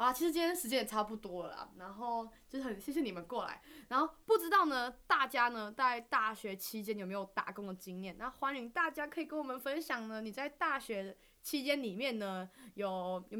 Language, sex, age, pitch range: Chinese, female, 20-39, 215-280 Hz